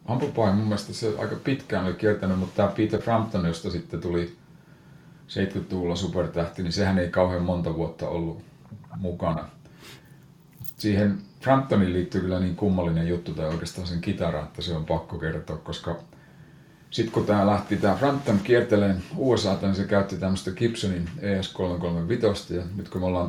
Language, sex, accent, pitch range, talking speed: Finnish, male, native, 85-105 Hz, 150 wpm